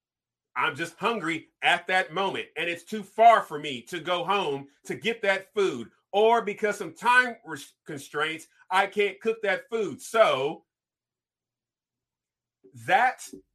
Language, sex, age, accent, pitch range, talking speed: English, male, 40-59, American, 170-240 Hz, 135 wpm